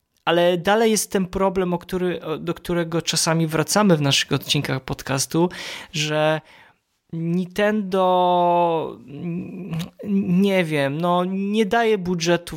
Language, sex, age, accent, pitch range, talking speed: Polish, male, 20-39, native, 145-175 Hz, 110 wpm